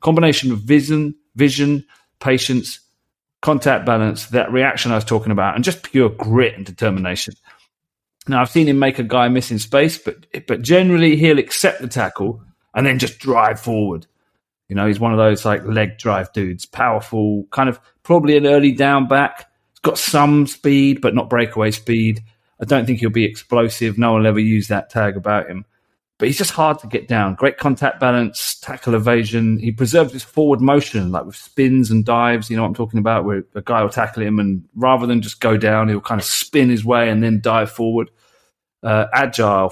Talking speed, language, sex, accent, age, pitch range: 200 wpm, English, male, British, 30-49, 110-135 Hz